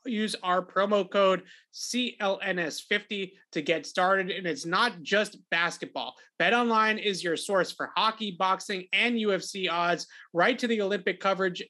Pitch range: 170-205 Hz